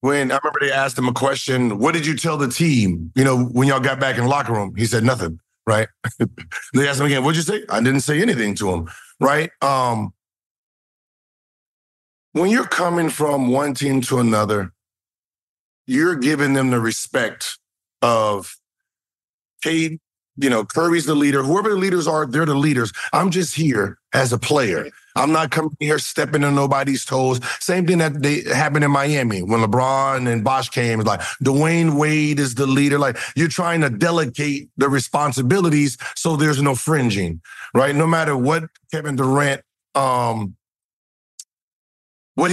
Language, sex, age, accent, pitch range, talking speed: English, male, 40-59, American, 125-160 Hz, 170 wpm